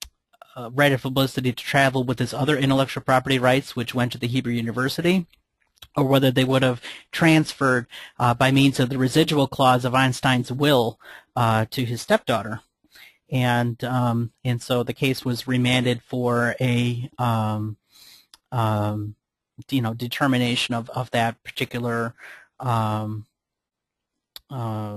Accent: American